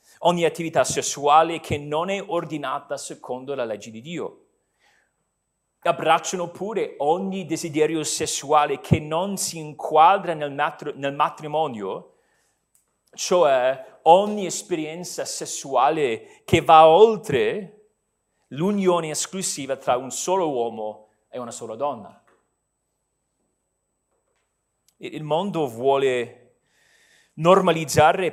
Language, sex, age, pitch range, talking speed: Italian, male, 40-59, 155-205 Hz, 95 wpm